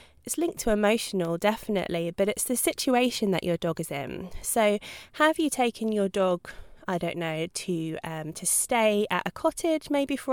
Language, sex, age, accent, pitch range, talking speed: English, female, 20-39, British, 180-235 Hz, 185 wpm